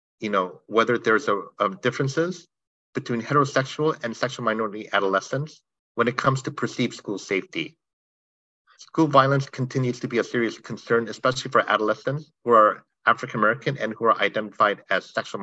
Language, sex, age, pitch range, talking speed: English, male, 50-69, 110-140 Hz, 160 wpm